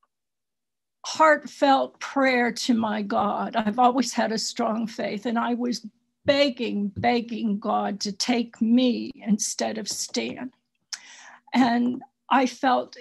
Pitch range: 220-270 Hz